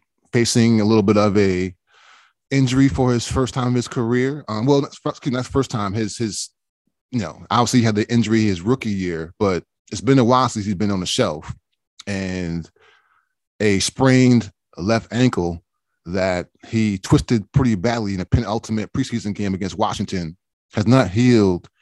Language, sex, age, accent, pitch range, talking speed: English, male, 20-39, American, 95-125 Hz, 175 wpm